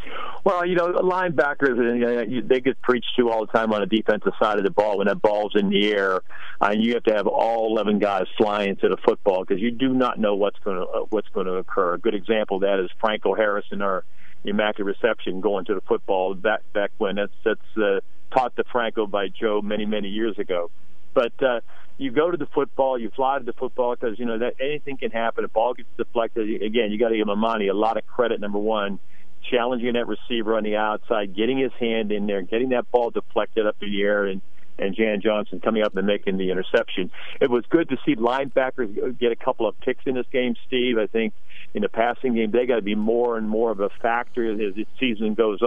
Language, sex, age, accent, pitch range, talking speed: English, male, 50-69, American, 105-125 Hz, 235 wpm